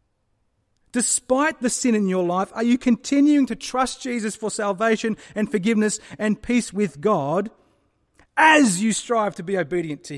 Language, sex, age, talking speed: English, male, 30-49, 160 wpm